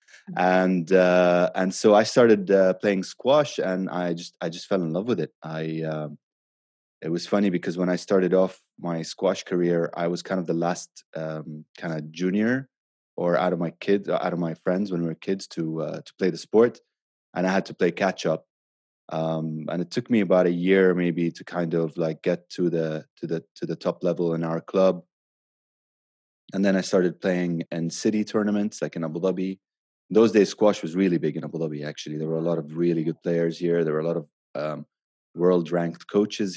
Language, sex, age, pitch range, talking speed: English, male, 20-39, 80-95 Hz, 215 wpm